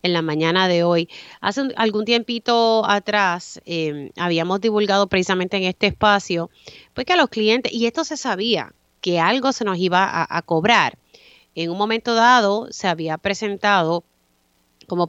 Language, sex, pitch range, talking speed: Spanish, female, 165-220 Hz, 165 wpm